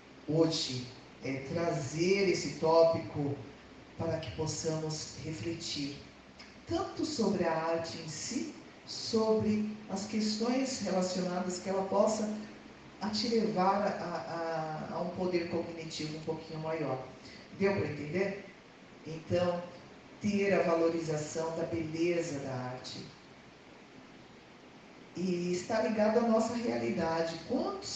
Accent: Brazilian